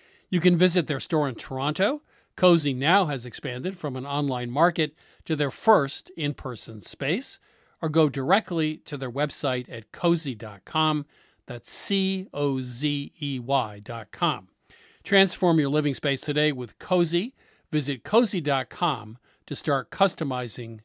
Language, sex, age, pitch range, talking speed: English, male, 50-69, 120-165 Hz, 125 wpm